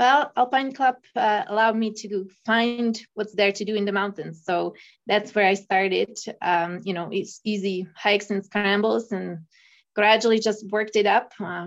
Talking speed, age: 180 wpm, 20-39